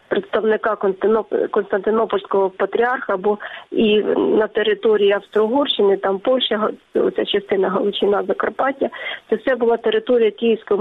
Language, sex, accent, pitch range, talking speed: Ukrainian, female, native, 205-260 Hz, 105 wpm